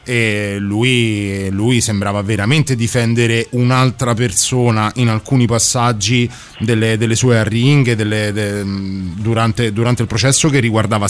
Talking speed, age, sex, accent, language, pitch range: 125 wpm, 30-49, male, native, Italian, 105-125 Hz